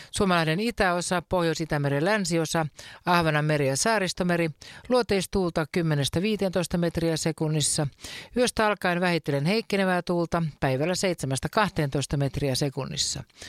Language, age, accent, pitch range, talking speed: Finnish, 50-69, native, 155-195 Hz, 95 wpm